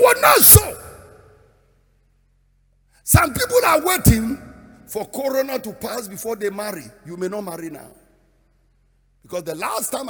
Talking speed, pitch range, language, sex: 135 wpm, 160-240 Hz, English, male